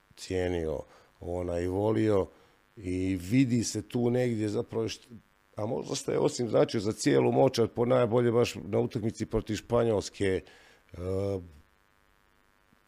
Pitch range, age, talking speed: 95-115 Hz, 50-69, 130 wpm